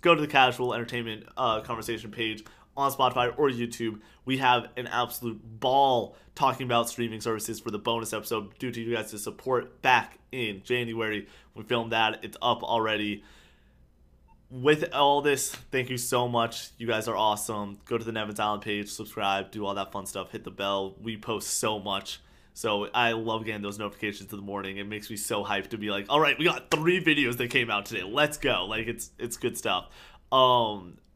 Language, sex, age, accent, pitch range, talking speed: English, male, 20-39, American, 105-125 Hz, 200 wpm